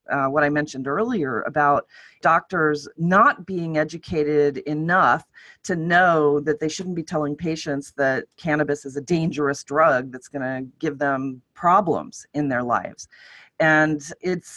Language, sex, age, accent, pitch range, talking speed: English, female, 30-49, American, 135-160 Hz, 150 wpm